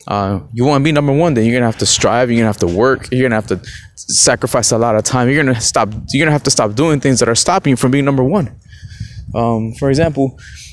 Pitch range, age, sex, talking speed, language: 110-145 Hz, 20-39, male, 270 wpm, English